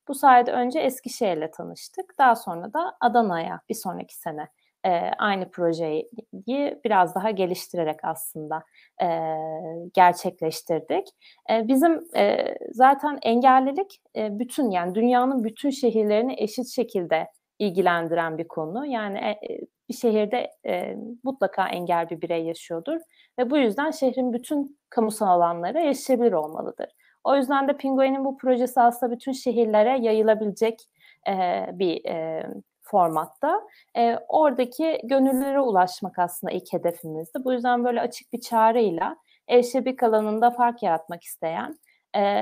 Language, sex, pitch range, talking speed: Turkish, female, 185-260 Hz, 115 wpm